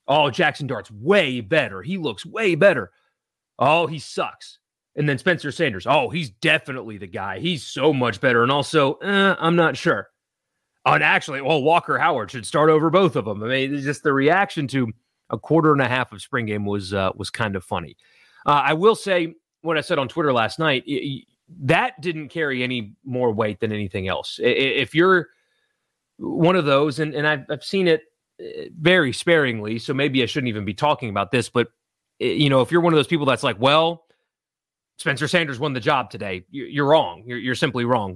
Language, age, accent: English, 30-49, American